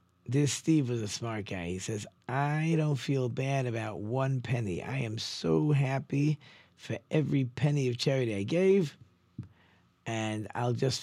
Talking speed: 160 wpm